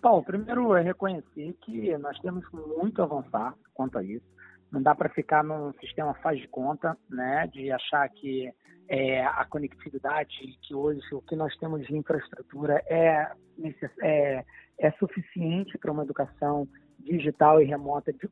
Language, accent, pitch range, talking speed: Portuguese, Brazilian, 140-180 Hz, 160 wpm